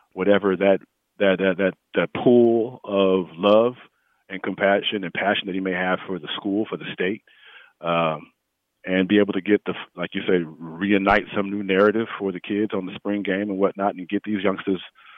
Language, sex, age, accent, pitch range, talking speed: English, male, 40-59, American, 95-105 Hz, 200 wpm